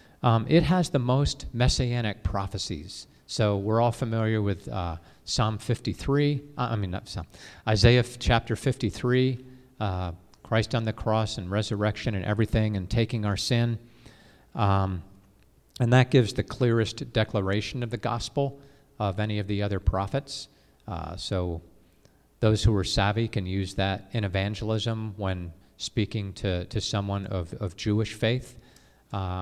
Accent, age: American, 40-59